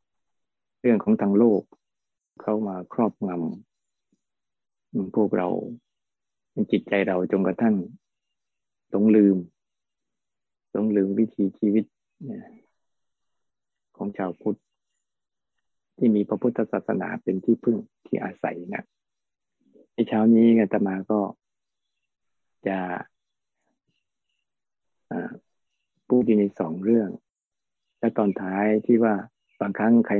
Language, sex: Thai, male